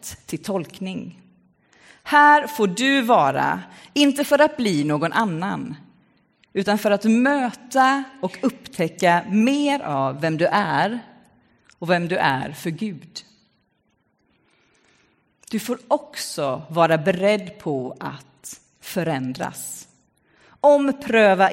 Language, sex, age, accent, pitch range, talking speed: Swedish, female, 40-59, native, 160-255 Hz, 105 wpm